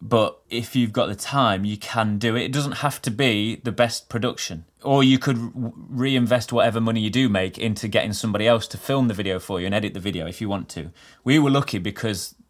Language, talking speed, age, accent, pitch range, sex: English, 235 wpm, 20-39, British, 95-115 Hz, male